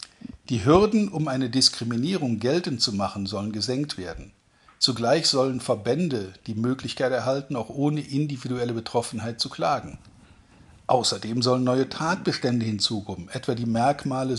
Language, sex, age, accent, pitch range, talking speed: German, male, 50-69, German, 115-150 Hz, 130 wpm